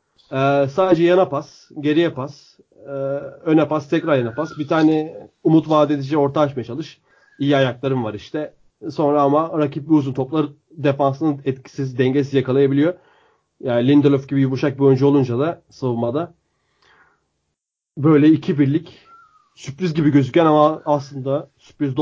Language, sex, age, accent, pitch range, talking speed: Turkish, male, 30-49, native, 135-165 Hz, 140 wpm